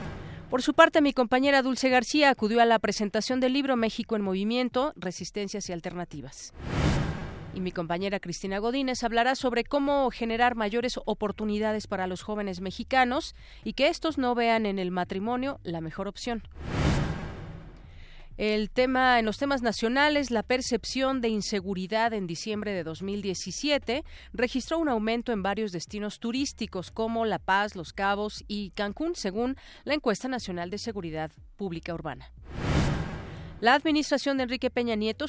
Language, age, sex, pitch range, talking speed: Spanish, 40-59, female, 195-250 Hz, 150 wpm